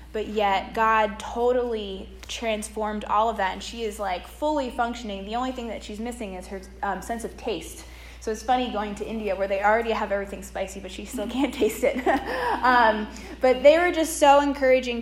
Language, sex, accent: English, female, American